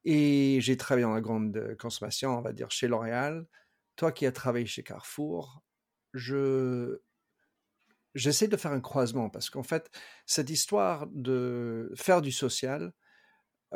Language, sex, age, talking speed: French, male, 50-69, 150 wpm